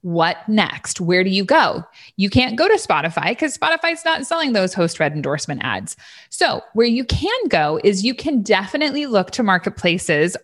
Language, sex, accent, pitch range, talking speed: English, female, American, 175-245 Hz, 185 wpm